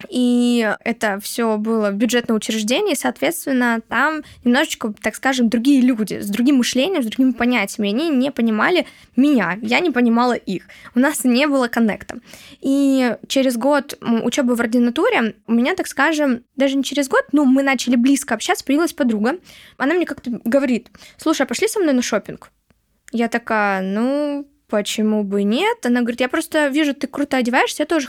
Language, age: Russian, 20-39